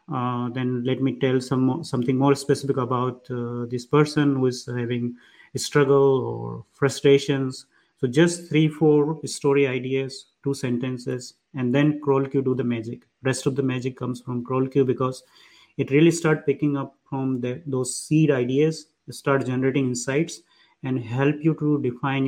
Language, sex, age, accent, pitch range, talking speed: English, male, 30-49, Indian, 125-145 Hz, 165 wpm